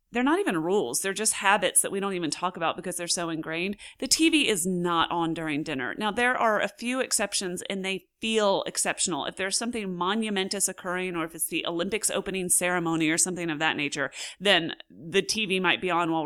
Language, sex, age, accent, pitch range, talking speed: English, female, 30-49, American, 170-230 Hz, 215 wpm